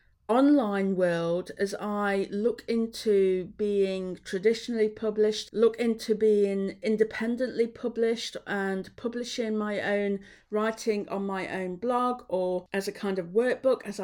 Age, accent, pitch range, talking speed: 50-69, British, 190-230 Hz, 130 wpm